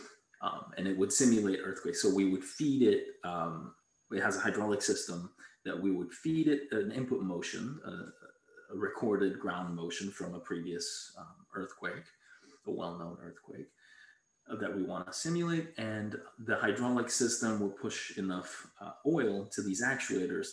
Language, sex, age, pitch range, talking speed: English, male, 30-49, 95-120 Hz, 165 wpm